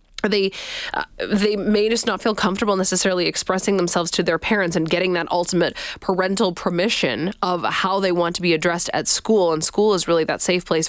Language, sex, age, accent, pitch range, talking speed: English, female, 20-39, American, 170-210 Hz, 200 wpm